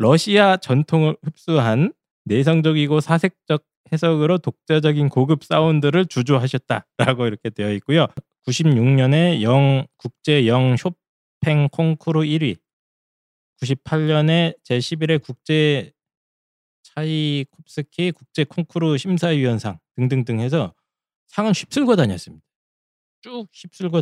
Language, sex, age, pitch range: Korean, male, 20-39, 115-160 Hz